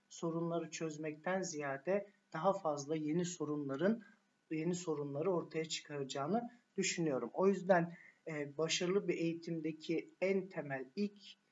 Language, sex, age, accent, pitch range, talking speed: Turkish, male, 50-69, native, 155-175 Hz, 105 wpm